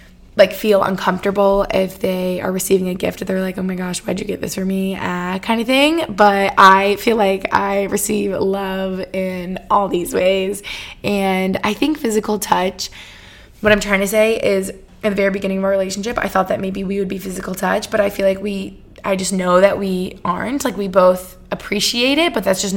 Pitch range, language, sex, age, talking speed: 190-215 Hz, English, female, 20-39, 215 wpm